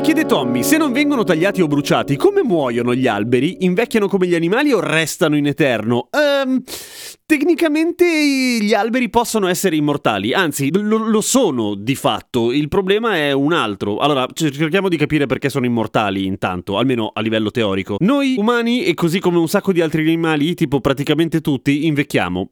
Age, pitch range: 30-49, 130-215 Hz